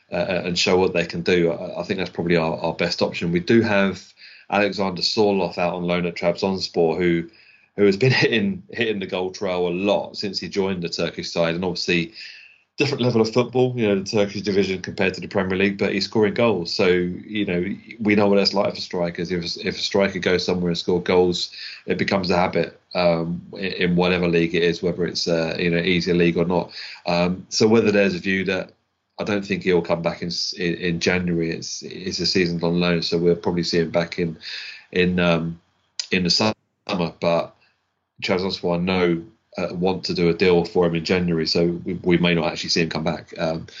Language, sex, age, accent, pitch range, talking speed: English, male, 30-49, British, 85-100 Hz, 225 wpm